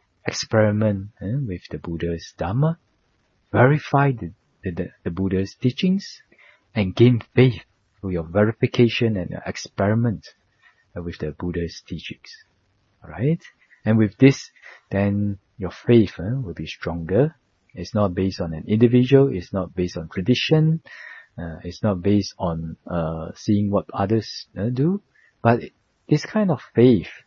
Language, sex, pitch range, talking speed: English, male, 90-115 Hz, 145 wpm